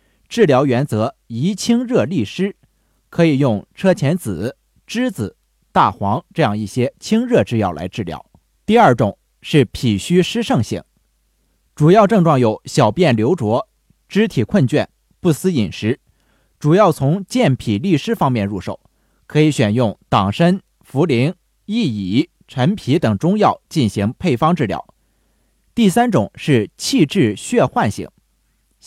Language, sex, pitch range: Chinese, male, 120-195 Hz